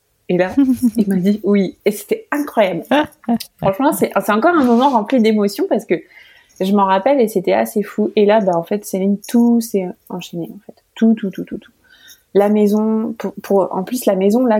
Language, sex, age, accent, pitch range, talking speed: French, female, 20-39, French, 195-235 Hz, 215 wpm